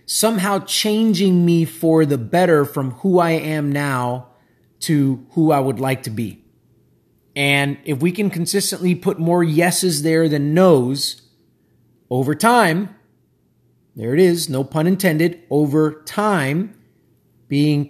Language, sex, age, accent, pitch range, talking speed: English, male, 30-49, American, 135-170 Hz, 135 wpm